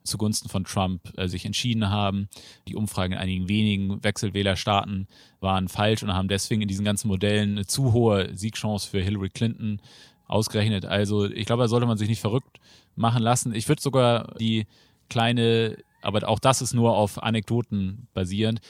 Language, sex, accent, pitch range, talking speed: German, male, German, 100-115 Hz, 170 wpm